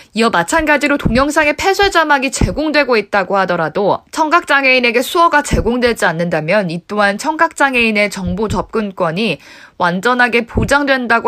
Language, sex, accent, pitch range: Korean, female, native, 190-270 Hz